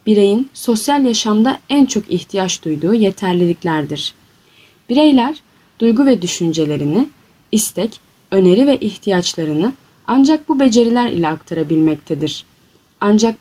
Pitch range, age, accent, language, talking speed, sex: 165-250 Hz, 30-49, native, Turkish, 100 wpm, female